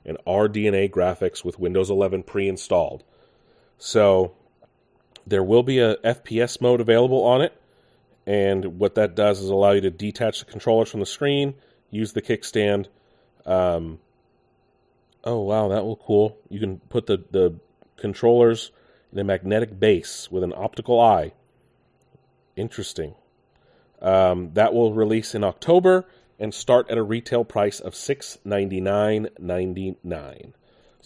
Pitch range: 100-130 Hz